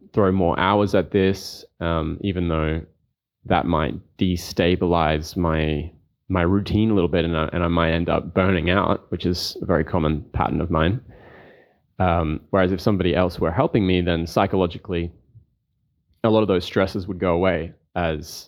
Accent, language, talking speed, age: Australian, English, 170 wpm, 20-39